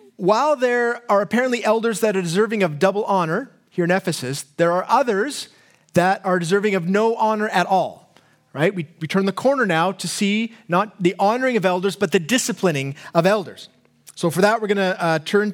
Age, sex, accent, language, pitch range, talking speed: 30-49, male, American, English, 175-225 Hz, 195 wpm